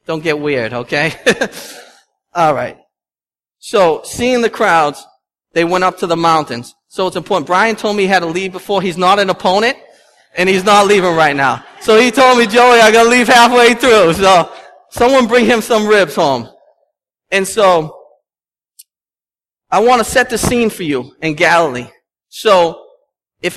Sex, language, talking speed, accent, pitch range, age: male, English, 170 wpm, American, 165-220 Hz, 30-49